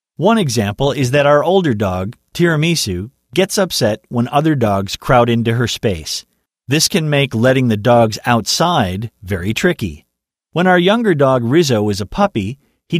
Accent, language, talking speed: American, English, 160 wpm